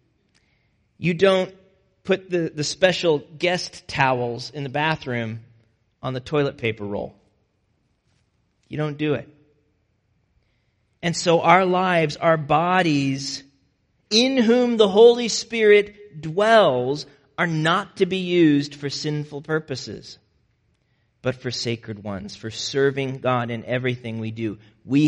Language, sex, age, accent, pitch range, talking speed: English, male, 40-59, American, 120-165 Hz, 125 wpm